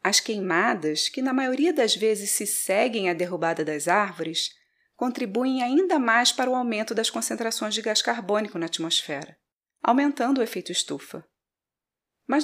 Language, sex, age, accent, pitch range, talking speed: Portuguese, female, 30-49, Brazilian, 175-250 Hz, 150 wpm